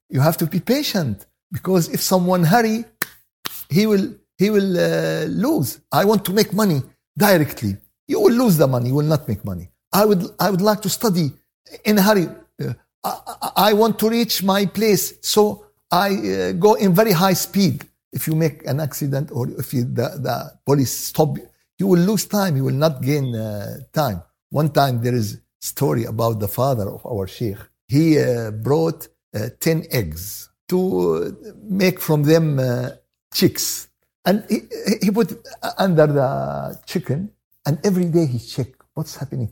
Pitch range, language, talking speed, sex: 135-190 Hz, Arabic, 180 wpm, male